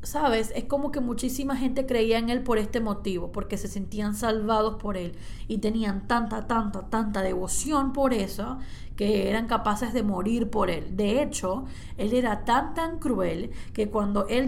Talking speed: 180 wpm